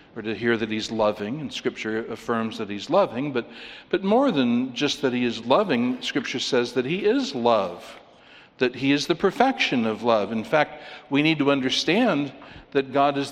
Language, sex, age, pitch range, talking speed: English, male, 60-79, 115-150 Hz, 195 wpm